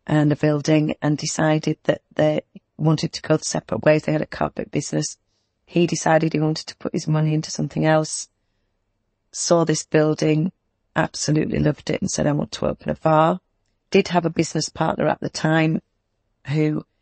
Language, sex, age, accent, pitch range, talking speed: English, female, 40-59, British, 145-160 Hz, 185 wpm